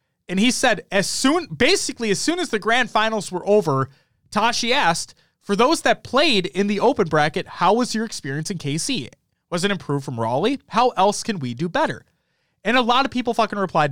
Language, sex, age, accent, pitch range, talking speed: English, male, 30-49, American, 155-235 Hz, 205 wpm